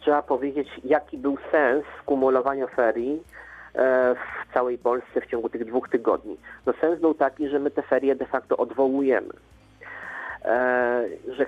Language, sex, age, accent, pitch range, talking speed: Polish, male, 40-59, native, 120-145 Hz, 140 wpm